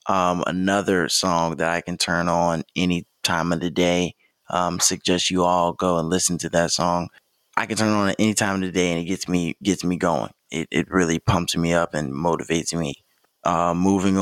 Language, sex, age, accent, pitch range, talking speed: English, male, 20-39, American, 85-95 Hz, 220 wpm